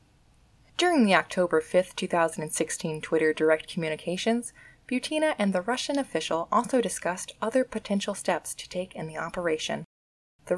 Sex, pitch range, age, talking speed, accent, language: female, 160-205 Hz, 20-39, 135 wpm, American, English